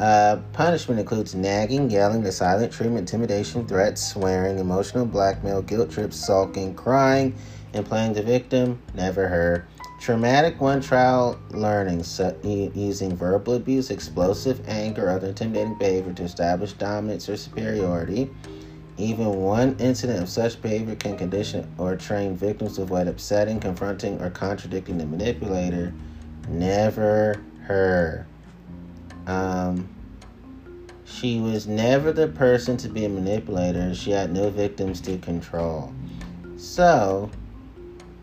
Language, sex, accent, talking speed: English, male, American, 125 wpm